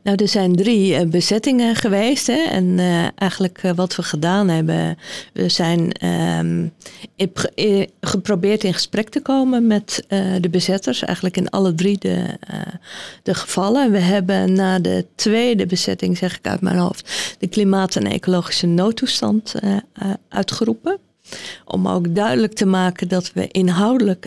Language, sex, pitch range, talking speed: Dutch, female, 180-205 Hz, 150 wpm